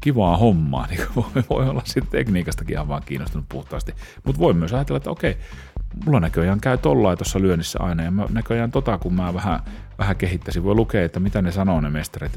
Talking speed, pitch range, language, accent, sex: 200 wpm, 80-95 Hz, Finnish, native, male